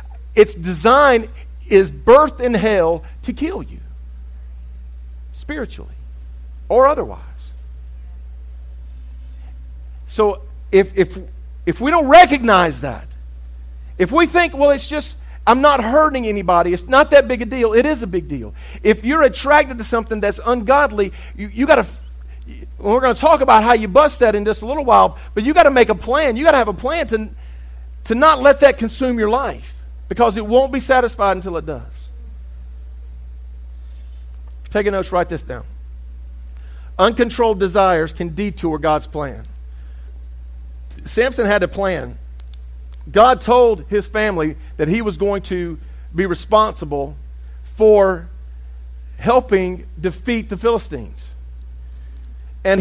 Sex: male